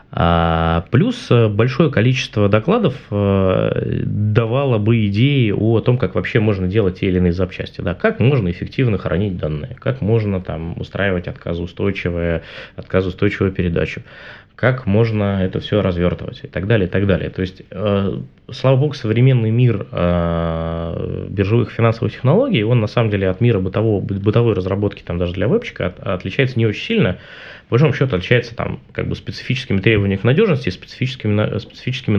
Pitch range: 95-120 Hz